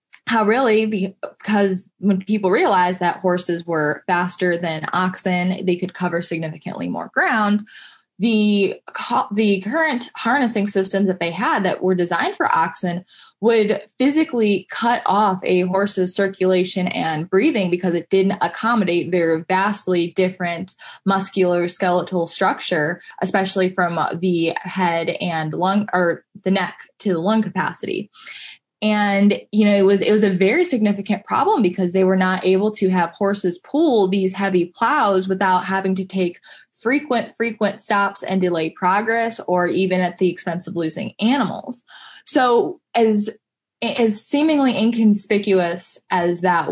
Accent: American